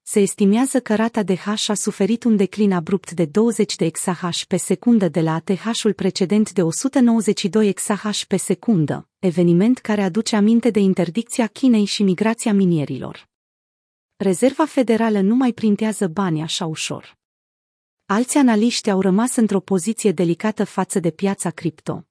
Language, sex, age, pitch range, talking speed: Romanian, female, 30-49, 180-225 Hz, 150 wpm